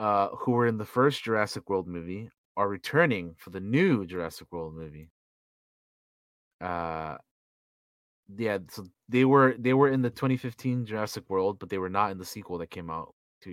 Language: English